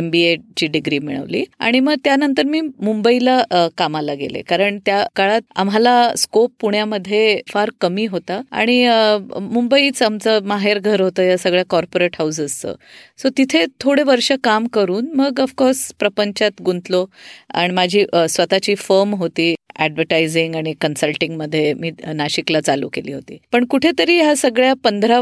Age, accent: 30-49, native